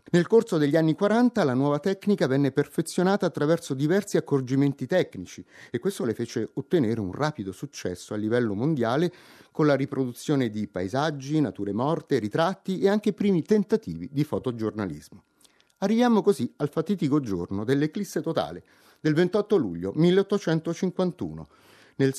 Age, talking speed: 30-49, 140 wpm